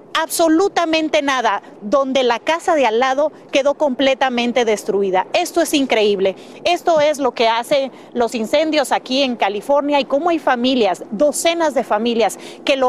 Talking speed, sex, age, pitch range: 155 wpm, female, 40-59, 235-285 Hz